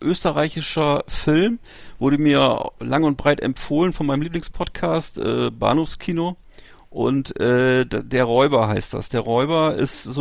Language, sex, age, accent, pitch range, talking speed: German, male, 40-59, German, 125-150 Hz, 130 wpm